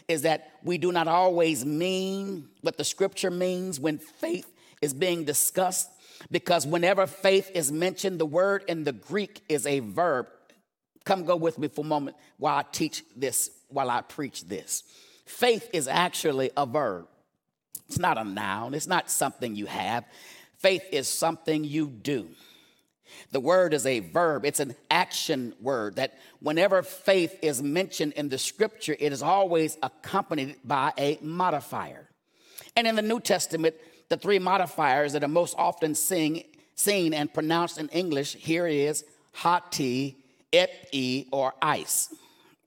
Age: 40-59